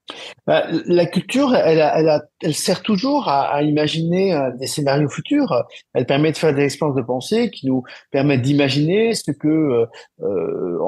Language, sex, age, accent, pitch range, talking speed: French, male, 50-69, French, 135-210 Hz, 155 wpm